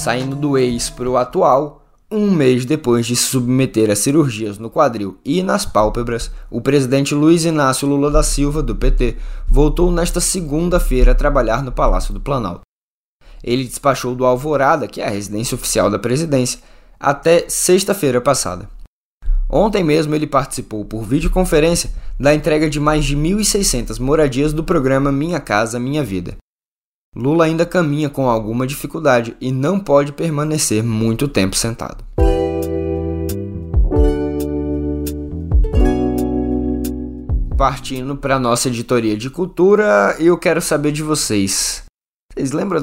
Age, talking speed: 20-39, 135 wpm